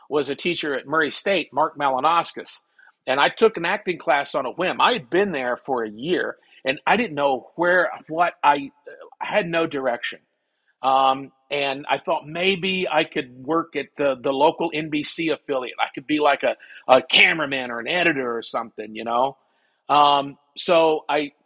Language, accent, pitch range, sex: English, American, 135-175 Hz, male